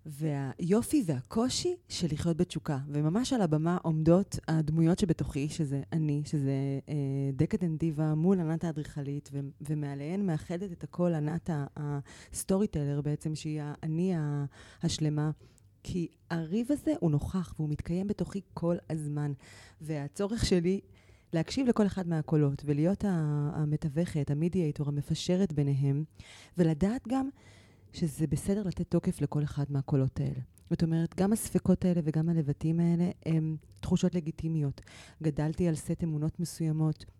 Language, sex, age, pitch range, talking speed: Hebrew, female, 30-49, 145-175 Hz, 125 wpm